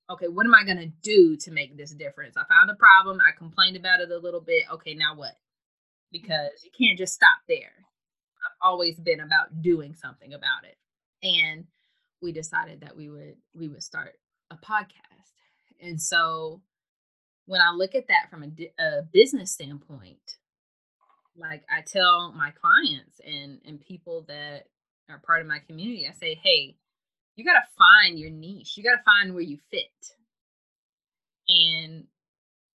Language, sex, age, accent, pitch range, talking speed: English, female, 20-39, American, 160-250 Hz, 165 wpm